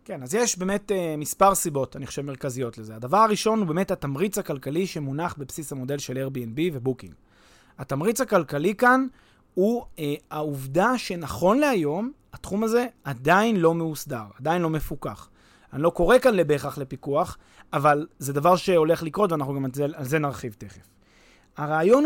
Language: Hebrew